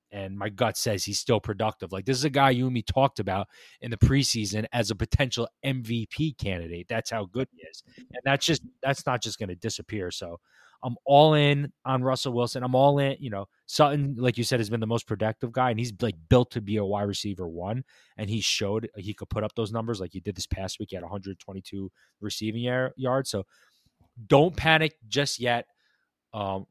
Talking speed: 220 wpm